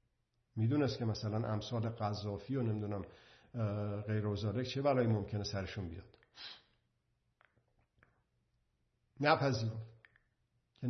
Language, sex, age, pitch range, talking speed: Persian, male, 50-69, 110-125 Hz, 90 wpm